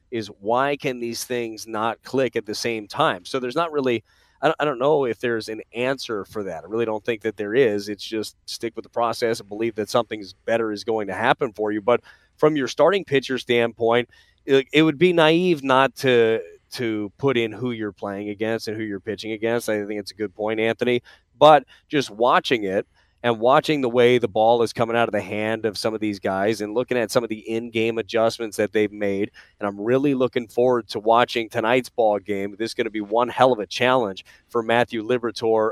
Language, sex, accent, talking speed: English, male, American, 225 wpm